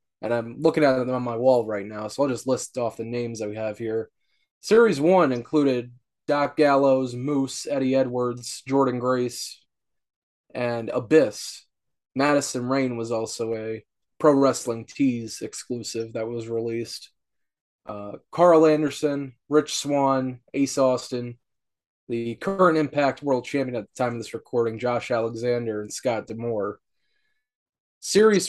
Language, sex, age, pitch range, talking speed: English, male, 20-39, 115-145 Hz, 145 wpm